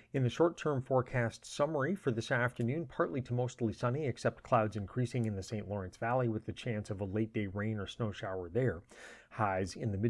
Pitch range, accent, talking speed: 110-130 Hz, American, 210 wpm